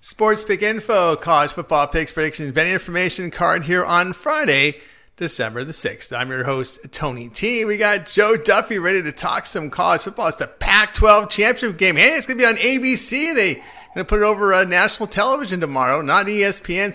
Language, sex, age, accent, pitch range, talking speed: English, male, 40-59, American, 150-190 Hz, 195 wpm